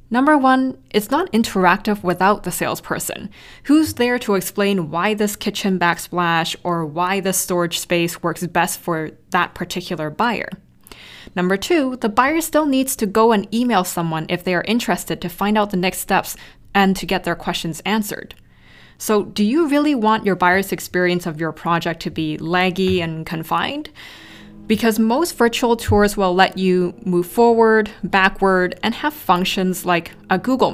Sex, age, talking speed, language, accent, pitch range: female, 20-39, 170 wpm, English, American, 175-230 Hz